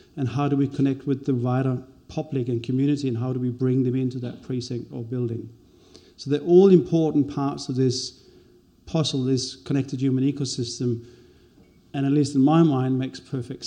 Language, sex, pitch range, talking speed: English, male, 125-145 Hz, 185 wpm